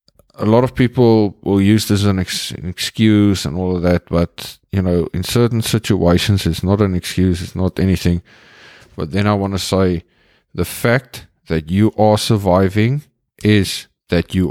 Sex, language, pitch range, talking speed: male, English, 85-105 Hz, 180 wpm